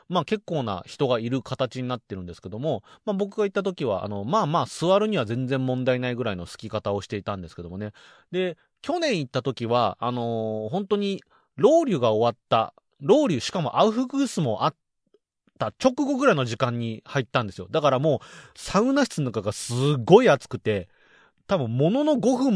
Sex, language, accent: male, Japanese, native